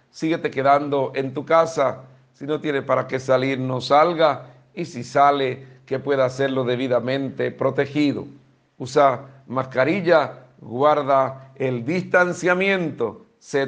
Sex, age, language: male, 50-69, Spanish